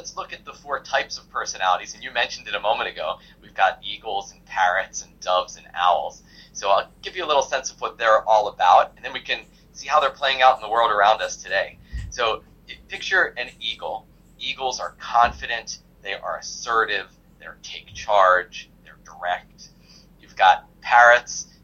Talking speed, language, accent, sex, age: 190 wpm, English, American, male, 30-49